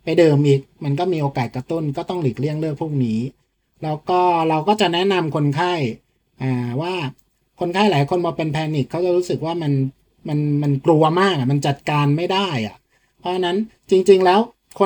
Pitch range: 140-180 Hz